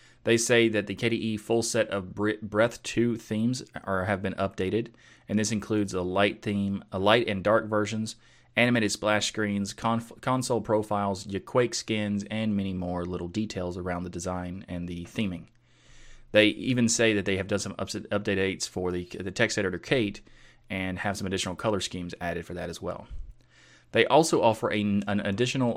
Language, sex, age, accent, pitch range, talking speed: English, male, 30-49, American, 95-115 Hz, 185 wpm